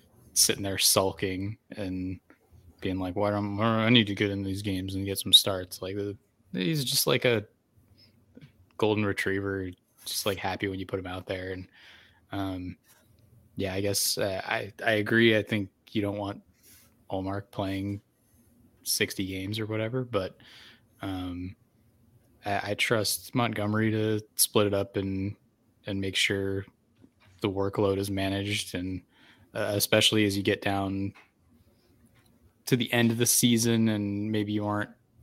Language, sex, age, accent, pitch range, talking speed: English, male, 20-39, American, 100-115 Hz, 155 wpm